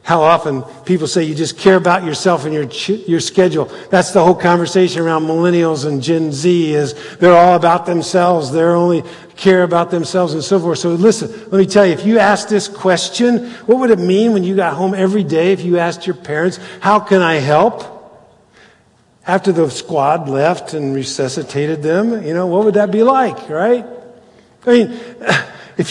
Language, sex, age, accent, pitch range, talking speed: English, male, 50-69, American, 165-220 Hz, 195 wpm